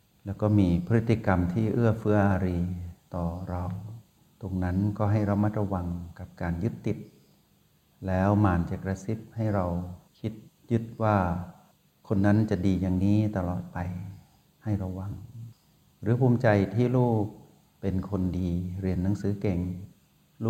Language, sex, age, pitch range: Thai, male, 60-79, 95-110 Hz